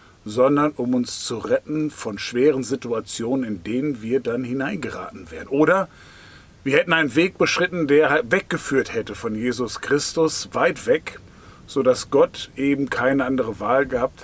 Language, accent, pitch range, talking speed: German, German, 120-155 Hz, 150 wpm